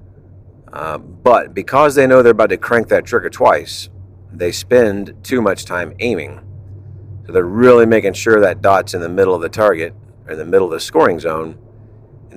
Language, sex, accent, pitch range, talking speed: English, male, American, 95-120 Hz, 190 wpm